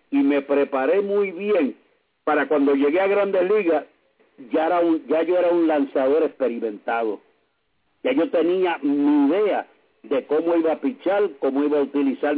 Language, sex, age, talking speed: English, male, 60-79, 165 wpm